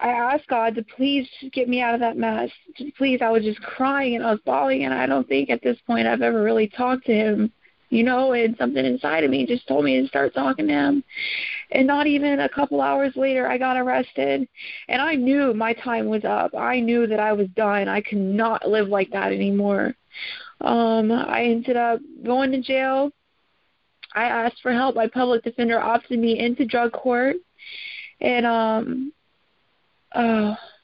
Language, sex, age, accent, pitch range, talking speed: English, female, 30-49, American, 225-260 Hz, 195 wpm